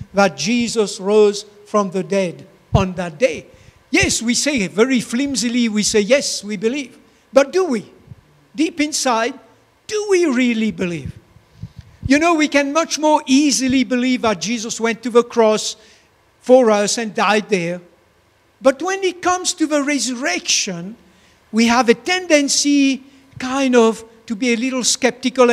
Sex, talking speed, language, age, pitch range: male, 155 wpm, English, 60-79, 210-275 Hz